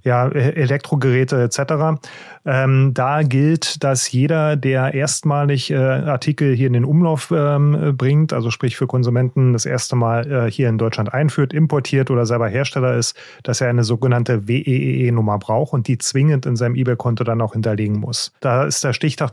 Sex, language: male, German